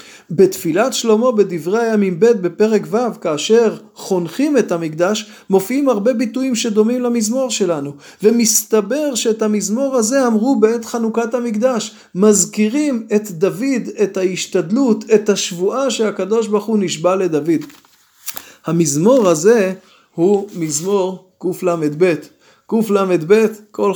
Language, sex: Hebrew, male